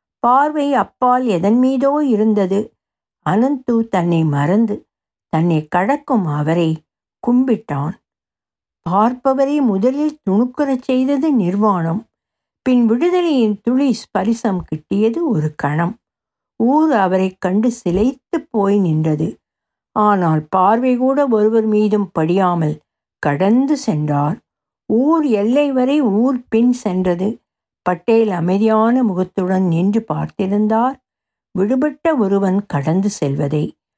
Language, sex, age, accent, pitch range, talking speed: Tamil, female, 60-79, native, 180-250 Hz, 95 wpm